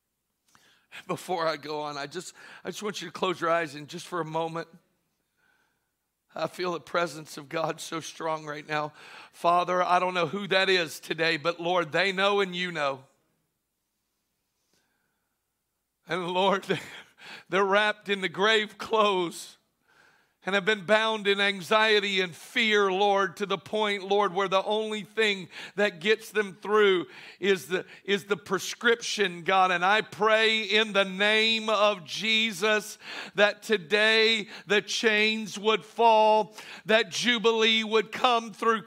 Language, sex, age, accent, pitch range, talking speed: English, male, 50-69, American, 180-220 Hz, 150 wpm